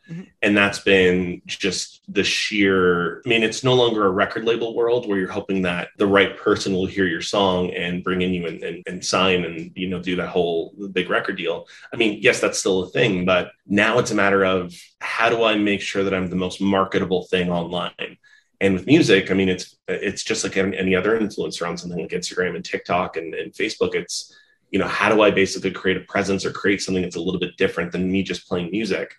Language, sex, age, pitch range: English, male, 20-39, 90-105 Hz